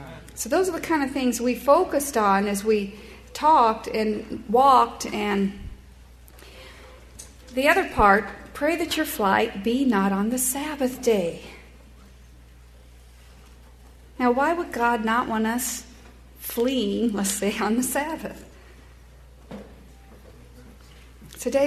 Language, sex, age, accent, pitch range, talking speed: English, female, 50-69, American, 195-260 Hz, 125 wpm